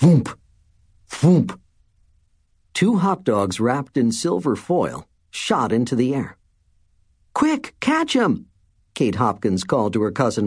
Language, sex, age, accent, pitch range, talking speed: English, male, 50-69, American, 90-150 Hz, 125 wpm